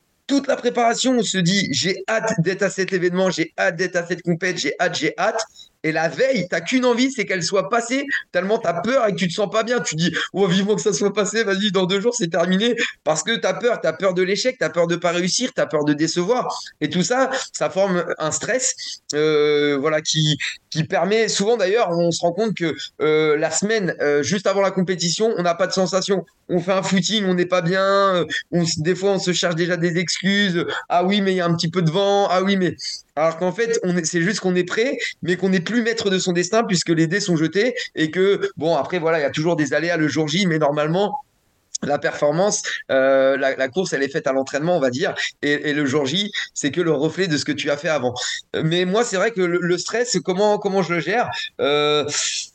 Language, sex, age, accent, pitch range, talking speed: French, male, 30-49, French, 160-200 Hz, 265 wpm